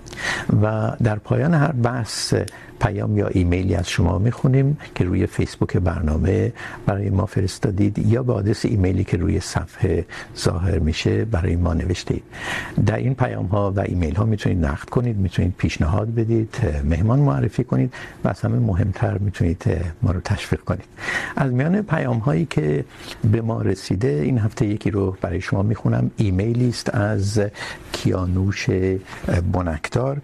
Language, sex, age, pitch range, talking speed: Urdu, male, 60-79, 90-115 Hz, 145 wpm